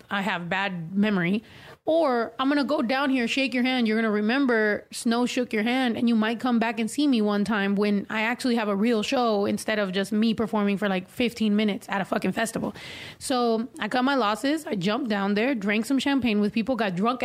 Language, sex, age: English, female, 30-49